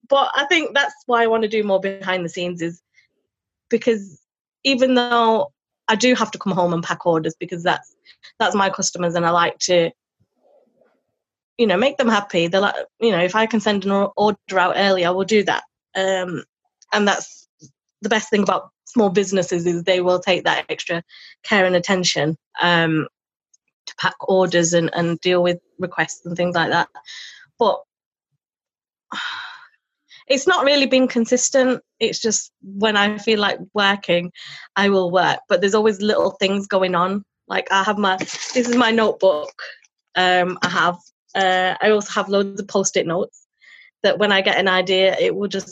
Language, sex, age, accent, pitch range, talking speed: English, female, 20-39, British, 180-225 Hz, 180 wpm